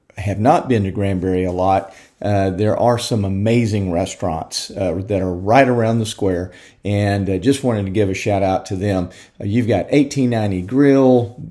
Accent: American